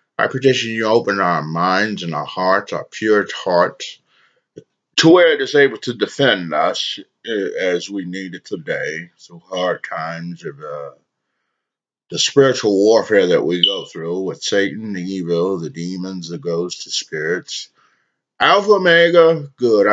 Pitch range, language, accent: 85-135 Hz, English, American